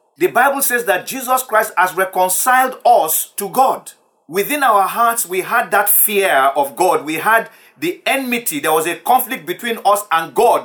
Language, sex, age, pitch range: English, male, 40-59, 180-255 Hz